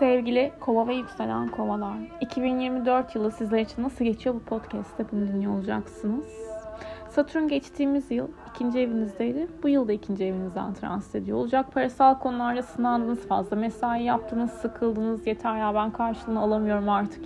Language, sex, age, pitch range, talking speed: Turkish, female, 30-49, 205-265 Hz, 140 wpm